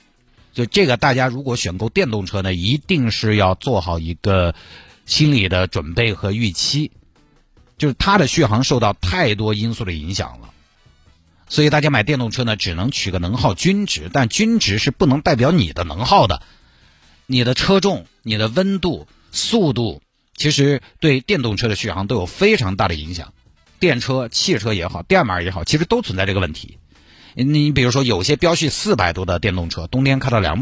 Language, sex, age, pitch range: Chinese, male, 50-69, 90-150 Hz